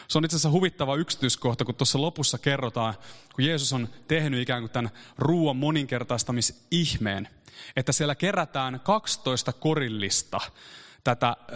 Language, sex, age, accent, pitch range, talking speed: Finnish, male, 30-49, native, 130-180 Hz, 130 wpm